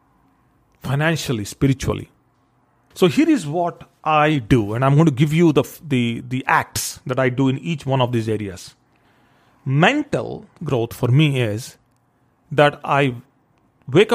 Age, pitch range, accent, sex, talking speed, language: 40-59, 125-150 Hz, Indian, male, 150 wpm, English